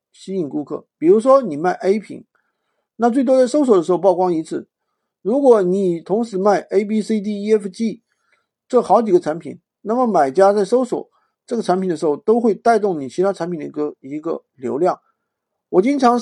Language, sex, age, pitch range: Chinese, male, 50-69, 180-260 Hz